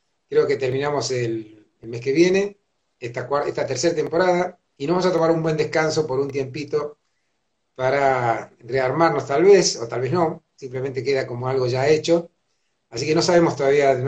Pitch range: 125-165 Hz